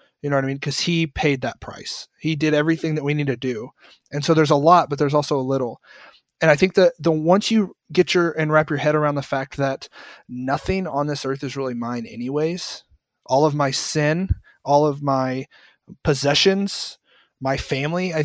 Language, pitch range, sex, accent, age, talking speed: English, 140-160 Hz, male, American, 30-49, 210 wpm